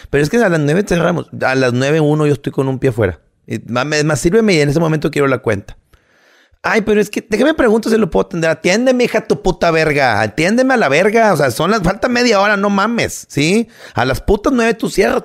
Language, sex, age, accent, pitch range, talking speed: Spanish, male, 40-59, Mexican, 125-180 Hz, 245 wpm